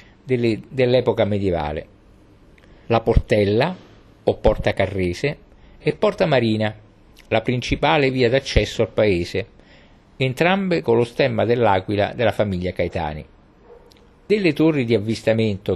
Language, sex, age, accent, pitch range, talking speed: Italian, male, 50-69, native, 100-130 Hz, 105 wpm